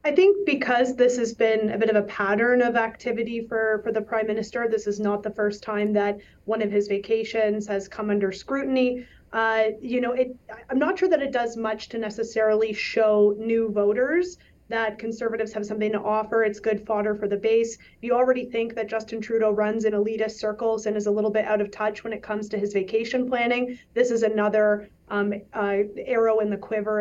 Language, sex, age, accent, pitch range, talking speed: English, female, 30-49, American, 210-230 Hz, 210 wpm